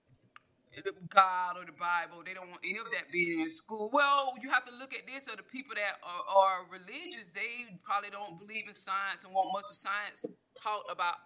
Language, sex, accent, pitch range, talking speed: English, female, American, 180-235 Hz, 215 wpm